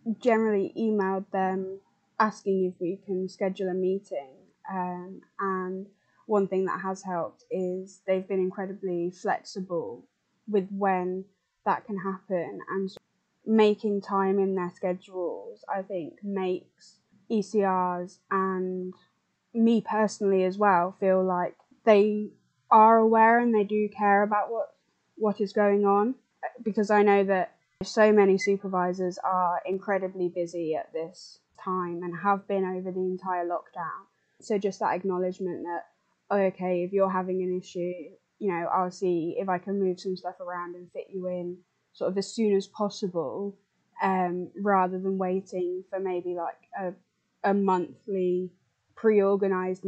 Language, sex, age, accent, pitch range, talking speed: English, female, 10-29, British, 185-200 Hz, 145 wpm